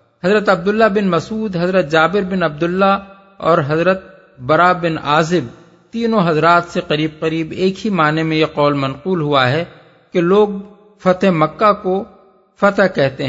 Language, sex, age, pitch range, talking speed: Urdu, male, 50-69, 155-195 Hz, 155 wpm